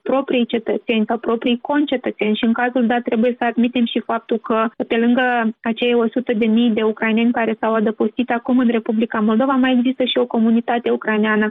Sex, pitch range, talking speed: female, 225-245 Hz, 175 wpm